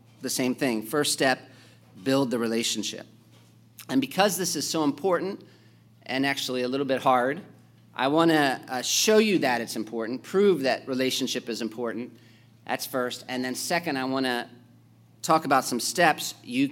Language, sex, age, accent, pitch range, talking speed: English, male, 40-59, American, 115-135 Hz, 160 wpm